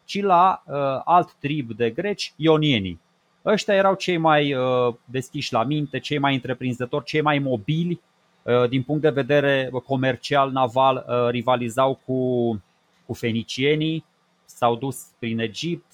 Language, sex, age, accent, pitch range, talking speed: Romanian, male, 30-49, native, 125-170 Hz, 140 wpm